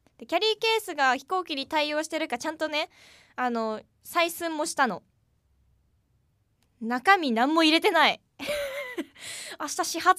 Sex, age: female, 20-39